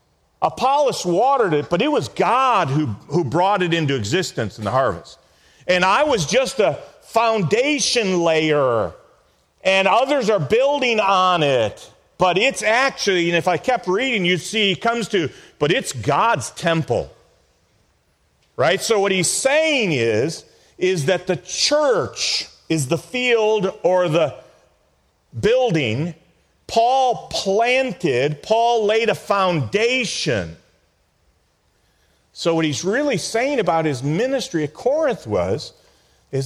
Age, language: 40-59, English